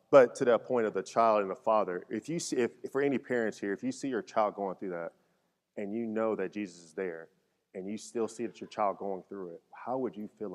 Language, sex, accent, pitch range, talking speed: English, male, American, 95-115 Hz, 275 wpm